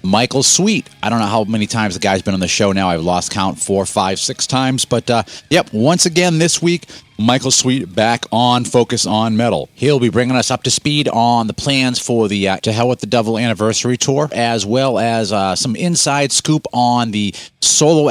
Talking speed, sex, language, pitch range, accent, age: 220 wpm, male, English, 110-150 Hz, American, 40-59